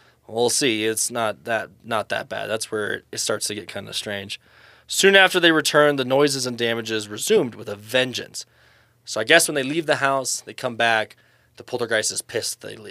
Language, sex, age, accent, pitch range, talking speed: English, male, 20-39, American, 115-155 Hz, 210 wpm